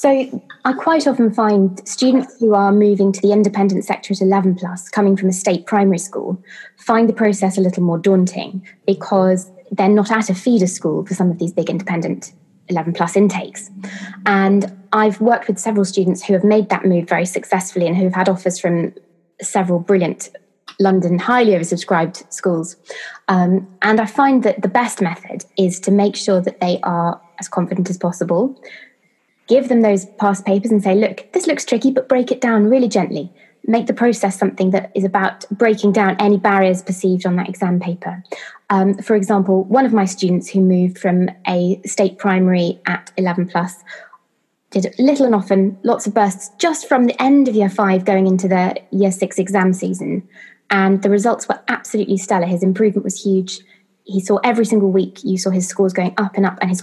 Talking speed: 195 wpm